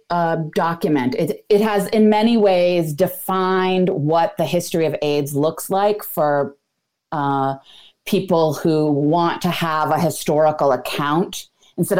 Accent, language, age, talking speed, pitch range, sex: American, English, 30-49, 135 wpm, 150-200 Hz, female